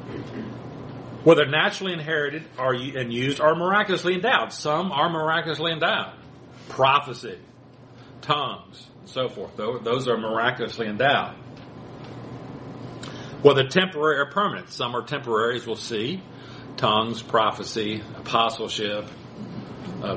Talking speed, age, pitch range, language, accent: 105 wpm, 50-69, 120-150 Hz, English, American